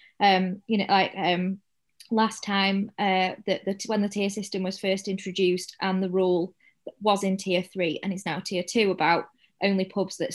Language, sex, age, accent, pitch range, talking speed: English, female, 20-39, British, 190-210 Hz, 190 wpm